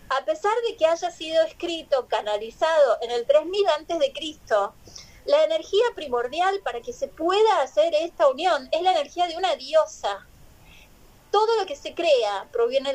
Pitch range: 265-360 Hz